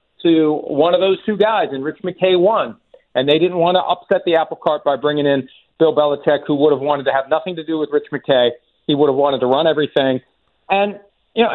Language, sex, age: English, male, 50-69